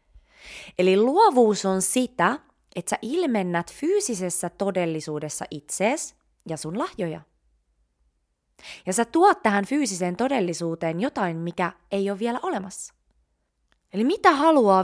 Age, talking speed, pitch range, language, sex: 20-39, 115 wpm, 150-215 Hz, Finnish, female